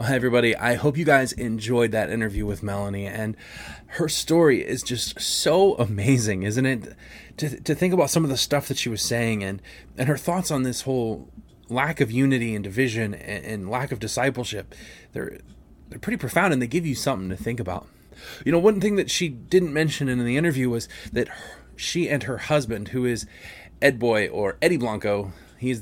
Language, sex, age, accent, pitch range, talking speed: English, male, 20-39, American, 105-145 Hz, 200 wpm